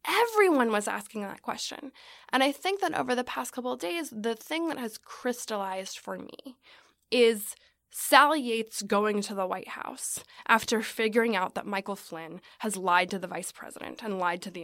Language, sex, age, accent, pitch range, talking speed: English, female, 20-39, American, 200-275 Hz, 190 wpm